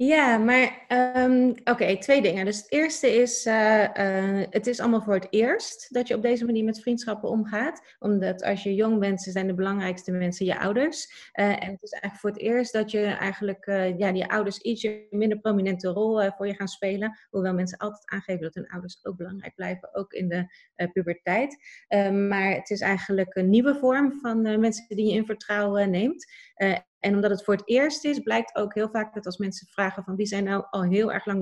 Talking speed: 225 wpm